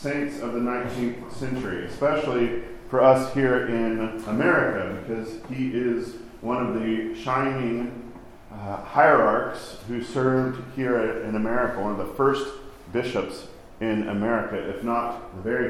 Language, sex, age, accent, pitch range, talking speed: English, male, 40-59, American, 110-130 Hz, 140 wpm